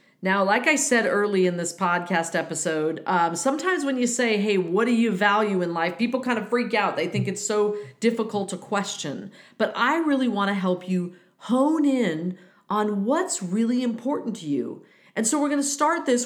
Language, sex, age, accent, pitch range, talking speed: English, female, 40-59, American, 180-255 Hz, 205 wpm